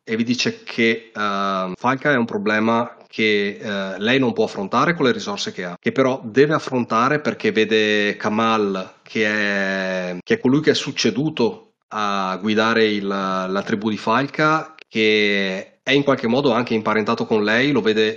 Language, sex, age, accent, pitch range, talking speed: Italian, male, 30-49, native, 105-125 Hz, 175 wpm